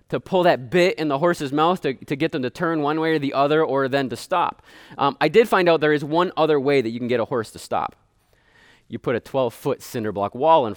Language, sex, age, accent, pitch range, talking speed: English, male, 20-39, American, 130-180 Hz, 280 wpm